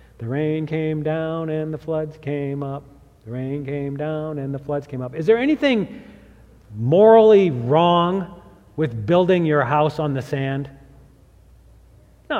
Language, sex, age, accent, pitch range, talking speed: English, male, 40-59, American, 130-200 Hz, 150 wpm